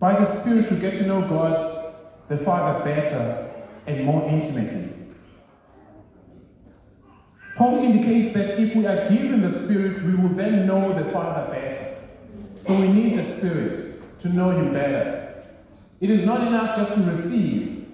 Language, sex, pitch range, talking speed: English, male, 160-215 Hz, 155 wpm